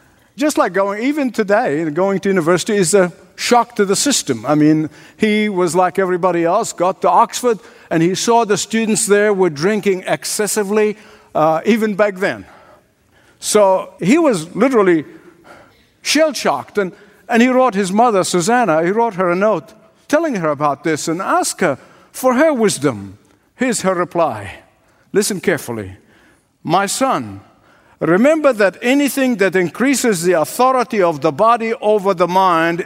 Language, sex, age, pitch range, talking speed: English, male, 60-79, 165-225 Hz, 150 wpm